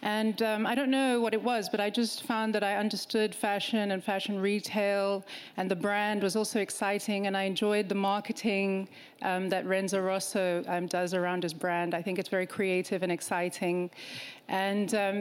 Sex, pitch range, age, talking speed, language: female, 185-225 Hz, 30-49, 190 wpm, English